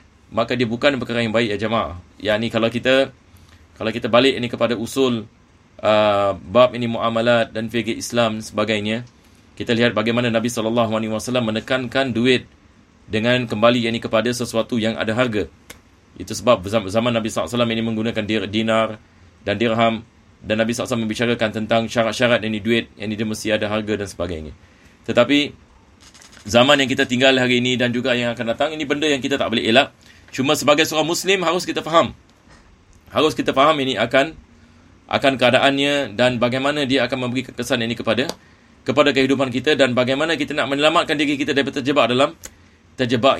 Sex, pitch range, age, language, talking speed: male, 110-130 Hz, 30-49, Malay, 170 wpm